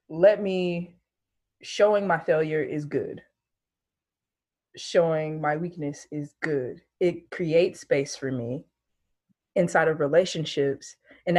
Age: 20-39